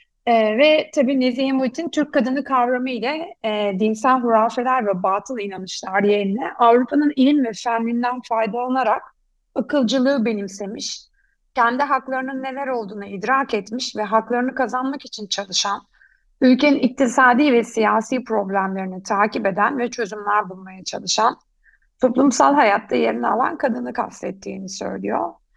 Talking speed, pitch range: 120 wpm, 205-260 Hz